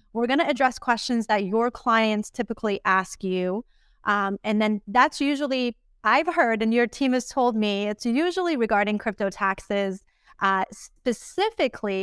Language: English